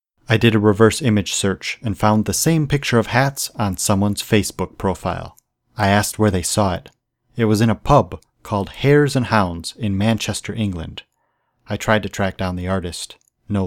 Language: English